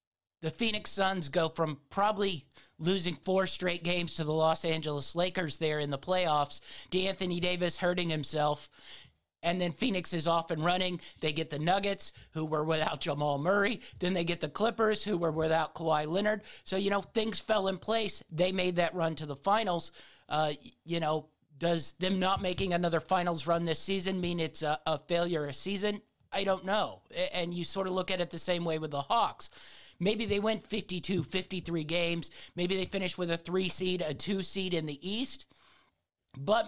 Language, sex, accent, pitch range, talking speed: English, male, American, 155-185 Hz, 190 wpm